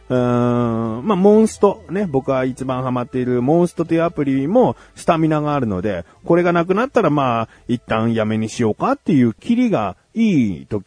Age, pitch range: 30-49, 130-215 Hz